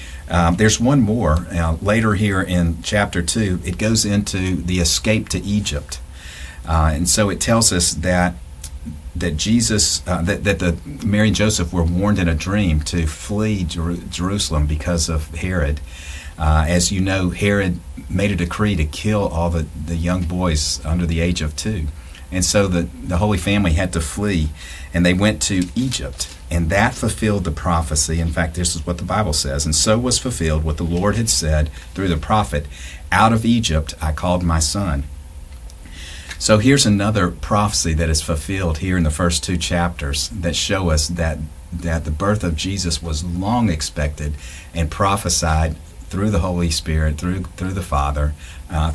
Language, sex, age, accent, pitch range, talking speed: English, male, 50-69, American, 75-95 Hz, 180 wpm